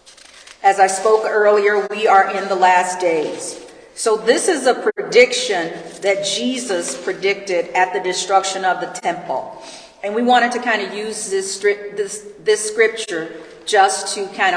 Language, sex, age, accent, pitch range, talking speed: English, female, 40-59, American, 185-230 Hz, 155 wpm